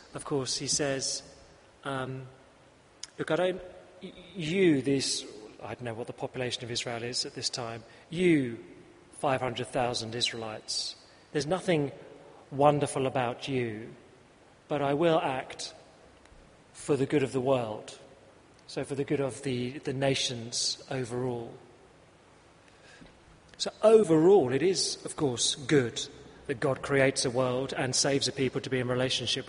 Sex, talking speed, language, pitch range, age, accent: male, 140 wpm, English, 120-145 Hz, 40-59, British